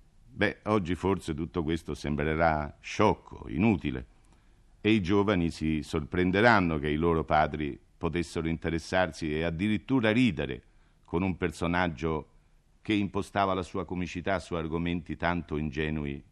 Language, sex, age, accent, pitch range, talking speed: Italian, male, 50-69, native, 80-105 Hz, 125 wpm